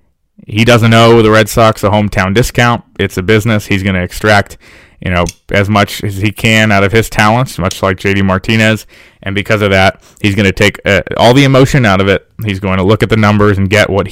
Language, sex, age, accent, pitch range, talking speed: English, male, 20-39, American, 95-110 Hz, 240 wpm